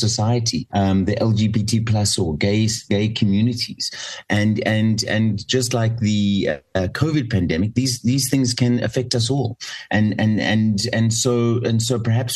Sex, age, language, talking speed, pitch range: male, 30-49, English, 160 wpm, 95-120 Hz